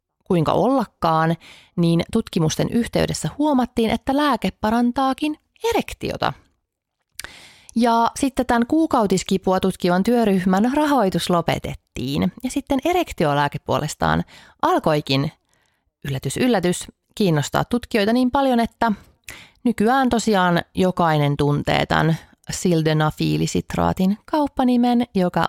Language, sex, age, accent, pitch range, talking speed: Finnish, female, 30-49, native, 160-240 Hz, 90 wpm